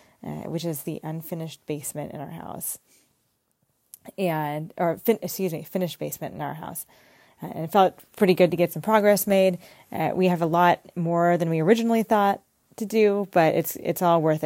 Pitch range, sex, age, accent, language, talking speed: 160-195 Hz, female, 30-49, American, English, 190 wpm